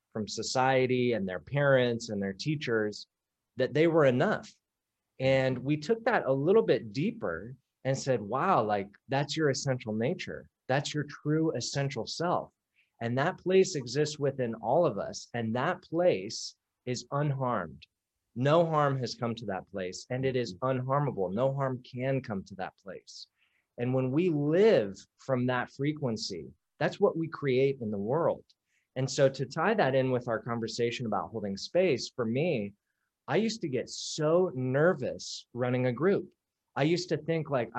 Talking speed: 170 wpm